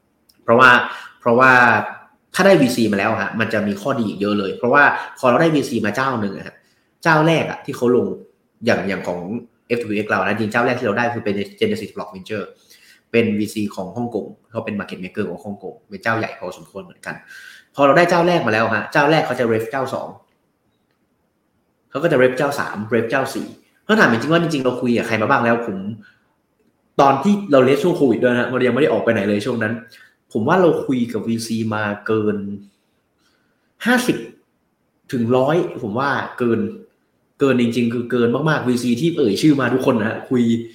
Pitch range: 105-130 Hz